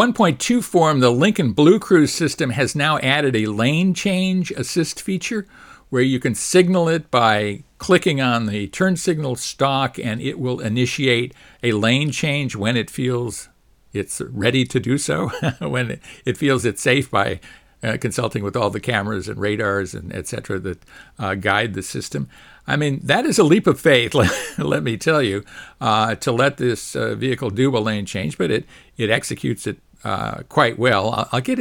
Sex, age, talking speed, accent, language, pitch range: male, 60-79, 175 wpm, American, English, 115-155 Hz